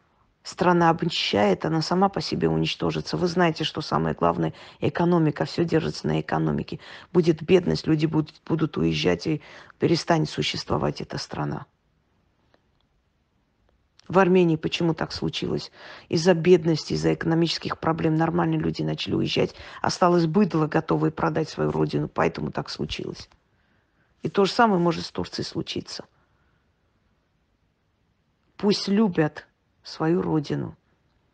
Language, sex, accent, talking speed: Russian, female, native, 120 wpm